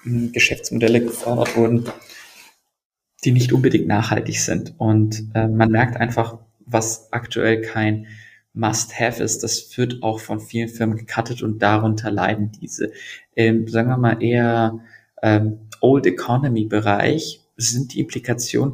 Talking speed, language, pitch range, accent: 125 wpm, German, 110-120 Hz, German